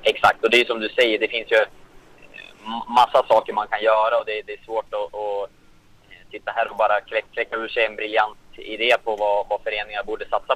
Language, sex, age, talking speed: Swedish, male, 20-39, 210 wpm